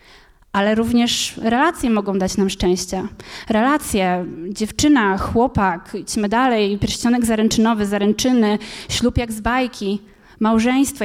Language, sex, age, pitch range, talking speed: Polish, female, 20-39, 205-255 Hz, 110 wpm